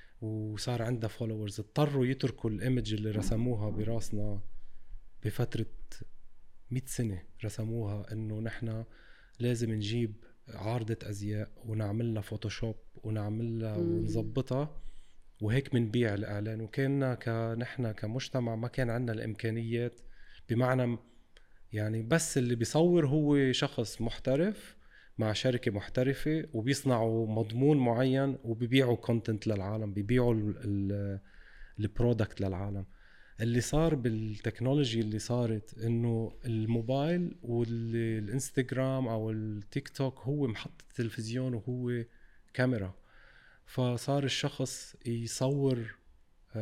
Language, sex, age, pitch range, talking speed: Arabic, male, 20-39, 110-125 Hz, 95 wpm